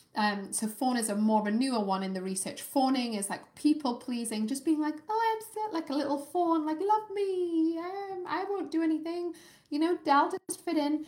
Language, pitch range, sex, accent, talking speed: English, 215-295 Hz, female, British, 225 wpm